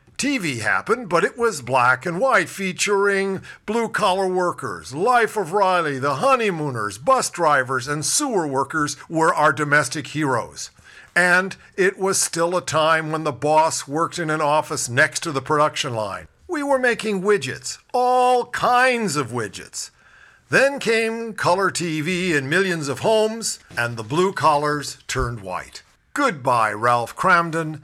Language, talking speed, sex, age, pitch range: English, 145 wpm, male, 50-69, 130-180 Hz